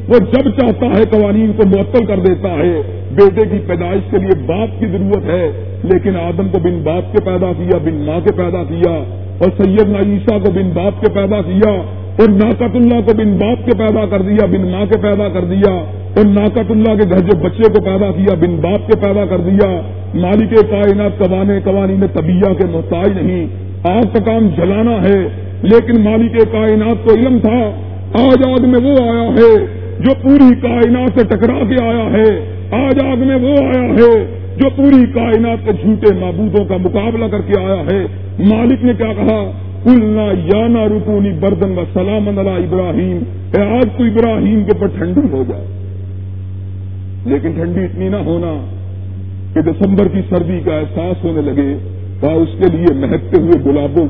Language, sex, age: Urdu, male, 50-69